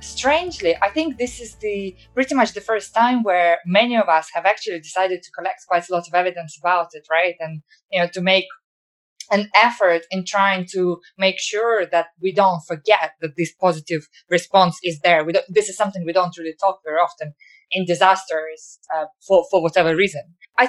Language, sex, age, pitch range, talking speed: English, female, 20-39, 170-210 Hz, 200 wpm